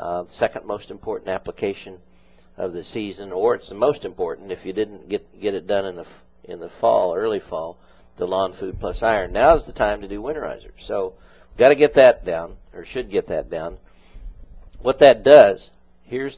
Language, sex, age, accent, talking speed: English, male, 50-69, American, 200 wpm